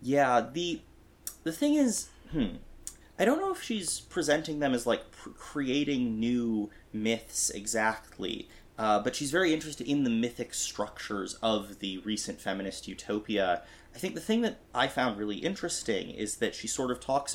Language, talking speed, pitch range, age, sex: English, 170 wpm, 100-130 Hz, 30-49, male